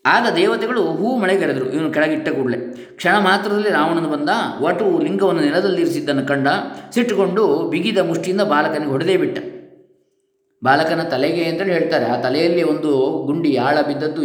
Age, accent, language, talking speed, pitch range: 20-39, native, Kannada, 135 wpm, 140-225 Hz